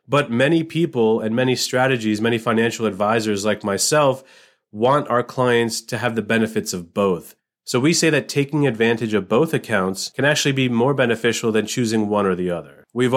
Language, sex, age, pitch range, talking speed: English, male, 30-49, 105-130 Hz, 185 wpm